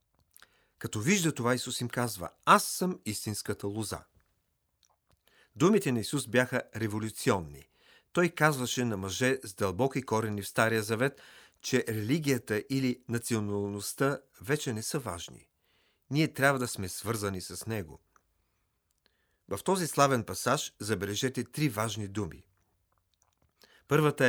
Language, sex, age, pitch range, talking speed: Bulgarian, male, 40-59, 100-135 Hz, 120 wpm